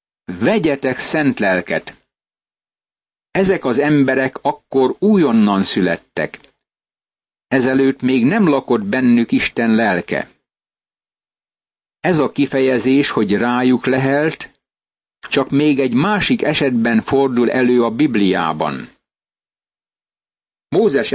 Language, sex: Hungarian, male